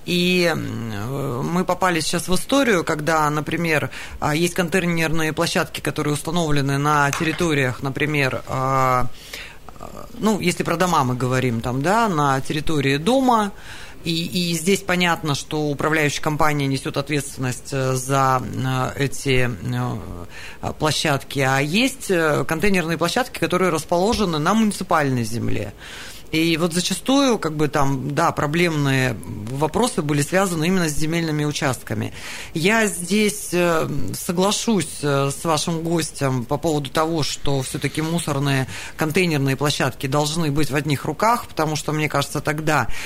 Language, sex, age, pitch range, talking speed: Russian, female, 30-49, 135-170 Hz, 120 wpm